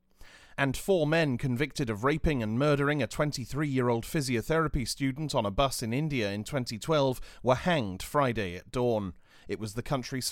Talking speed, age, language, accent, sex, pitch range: 165 wpm, 30-49, English, British, male, 110-145 Hz